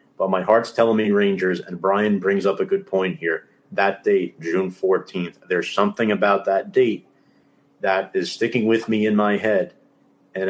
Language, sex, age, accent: English, male, 30-49, American